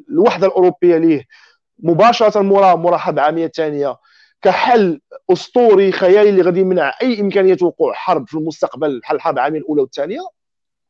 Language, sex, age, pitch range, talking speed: Arabic, male, 50-69, 165-245 Hz, 130 wpm